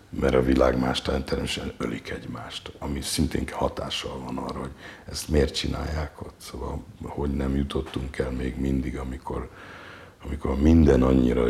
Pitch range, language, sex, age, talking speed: 65-80 Hz, Hungarian, male, 60-79, 140 wpm